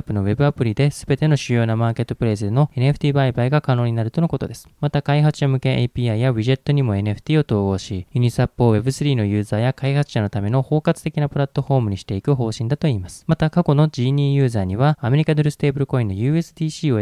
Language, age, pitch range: Japanese, 20-39, 110-145 Hz